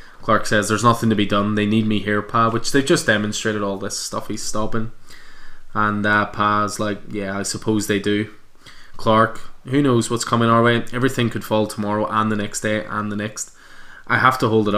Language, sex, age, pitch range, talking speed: English, male, 20-39, 105-115 Hz, 215 wpm